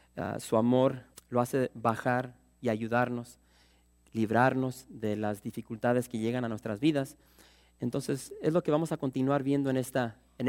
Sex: male